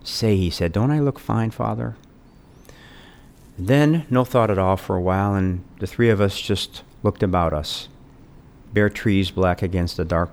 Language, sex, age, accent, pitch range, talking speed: English, male, 50-69, American, 85-105 Hz, 180 wpm